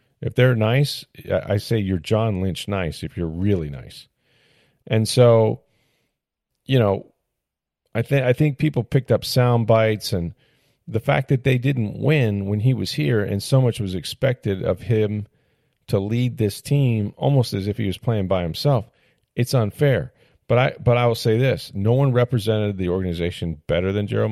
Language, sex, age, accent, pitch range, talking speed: English, male, 40-59, American, 100-125 Hz, 180 wpm